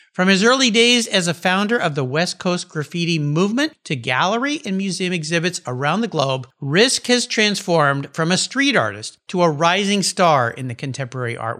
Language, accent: English, American